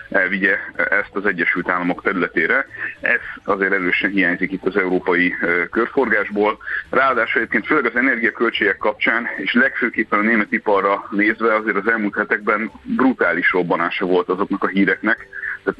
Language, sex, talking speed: Hungarian, male, 140 wpm